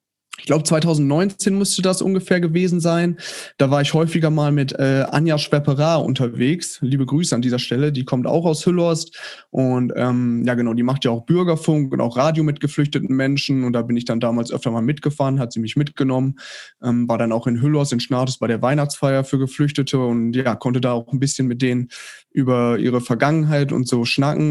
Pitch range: 125-150 Hz